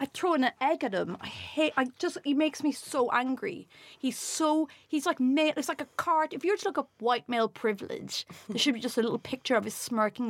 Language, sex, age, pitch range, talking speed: English, female, 30-49, 230-355 Hz, 245 wpm